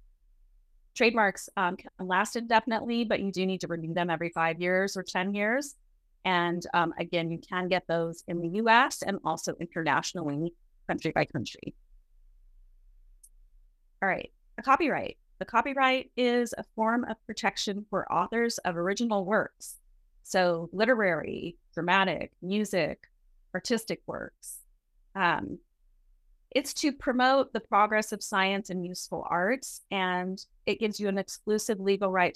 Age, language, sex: 30-49, English, female